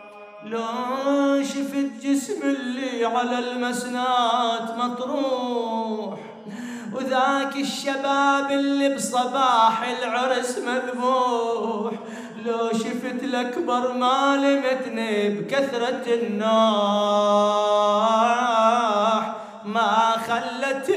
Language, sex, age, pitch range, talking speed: Arabic, male, 30-49, 220-275 Hz, 65 wpm